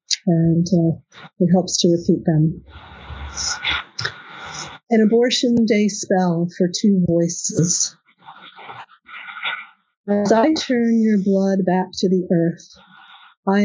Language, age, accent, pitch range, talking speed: English, 50-69, American, 170-200 Hz, 105 wpm